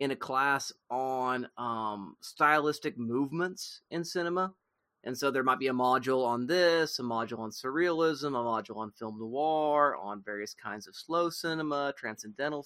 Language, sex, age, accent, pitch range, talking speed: English, male, 30-49, American, 120-150 Hz, 160 wpm